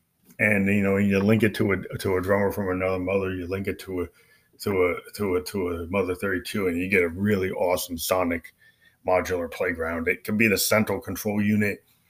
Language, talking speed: English, 220 wpm